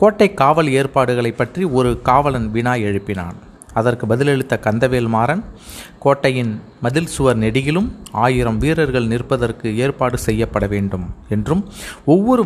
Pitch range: 110-140 Hz